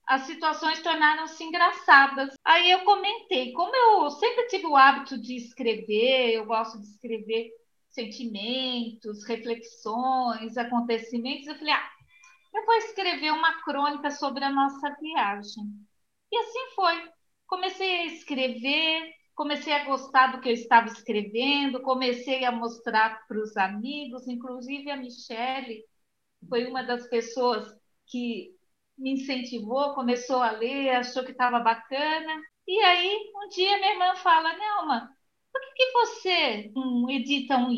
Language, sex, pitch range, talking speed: Portuguese, female, 240-315 Hz, 135 wpm